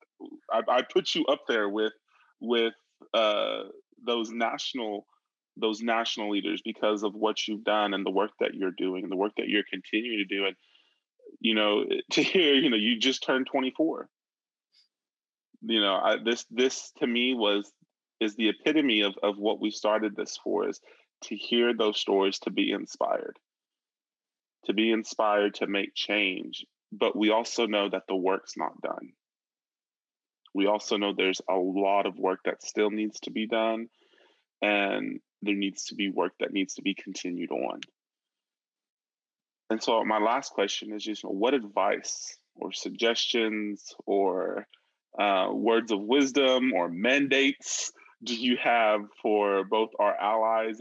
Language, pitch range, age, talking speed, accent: English, 100-115 Hz, 20-39, 160 wpm, American